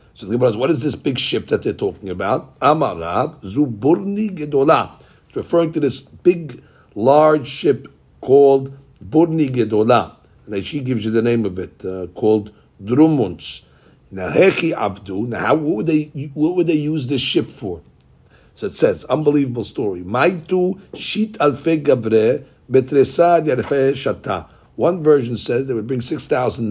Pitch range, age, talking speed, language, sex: 115-155 Hz, 60-79, 140 wpm, English, male